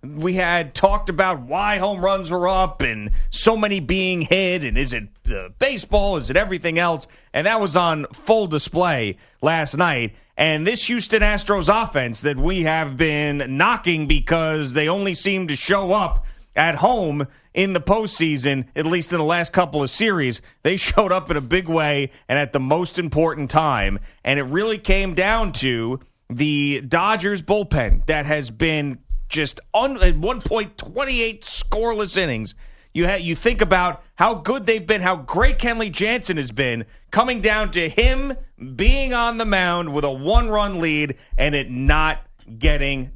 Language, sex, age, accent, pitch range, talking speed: English, male, 30-49, American, 155-215 Hz, 170 wpm